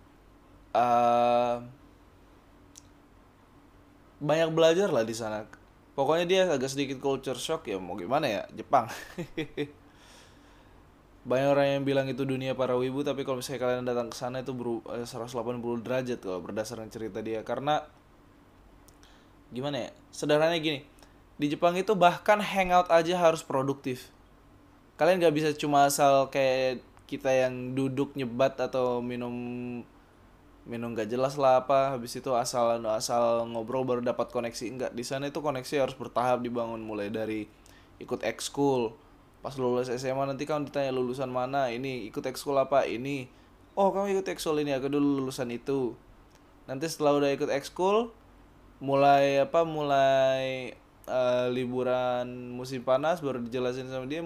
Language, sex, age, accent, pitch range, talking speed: Indonesian, male, 20-39, native, 120-145 Hz, 140 wpm